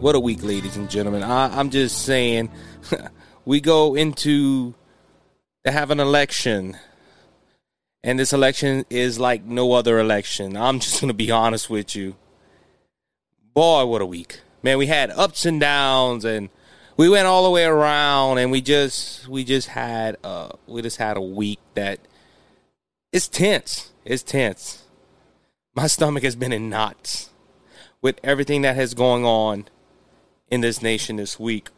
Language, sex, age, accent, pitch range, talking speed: English, male, 30-49, American, 115-145 Hz, 155 wpm